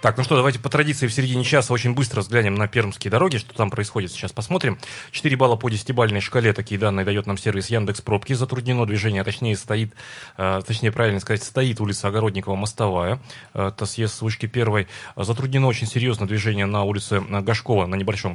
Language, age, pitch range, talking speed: Russian, 30-49, 100-125 Hz, 185 wpm